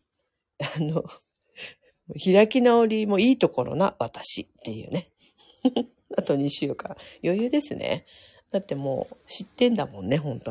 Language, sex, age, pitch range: Japanese, female, 40-59, 135-175 Hz